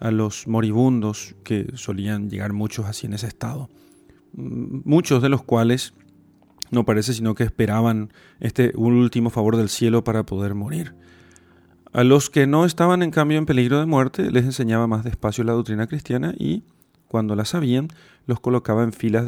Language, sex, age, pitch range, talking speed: Spanish, male, 40-59, 110-130 Hz, 170 wpm